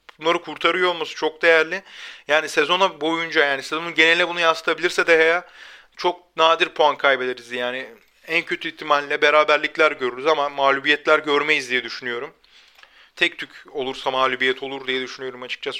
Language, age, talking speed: Turkish, 30-49, 140 wpm